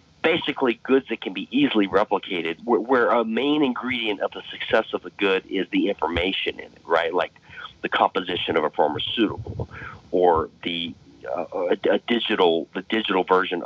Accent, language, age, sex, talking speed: American, English, 40-59, male, 170 wpm